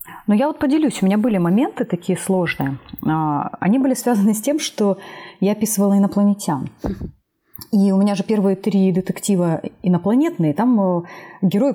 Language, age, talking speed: Russian, 30-49, 150 wpm